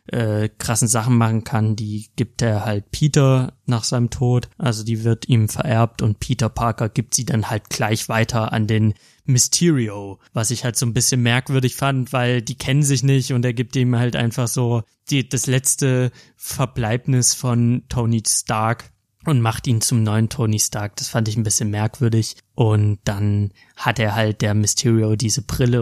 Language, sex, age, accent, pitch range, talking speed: German, male, 20-39, German, 110-125 Hz, 180 wpm